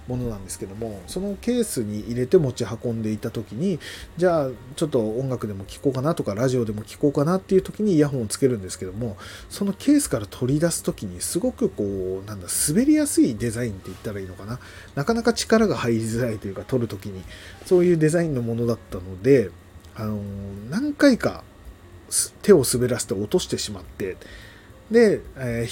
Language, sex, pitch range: Japanese, male, 100-130 Hz